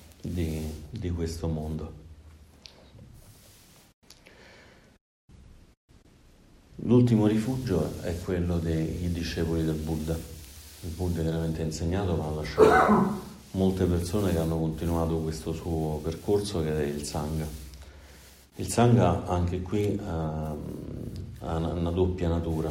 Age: 40-59